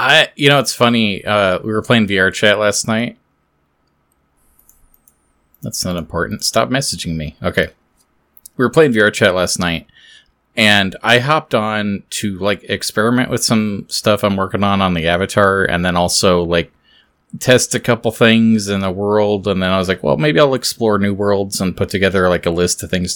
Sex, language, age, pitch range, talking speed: male, English, 30-49, 95-115 Hz, 185 wpm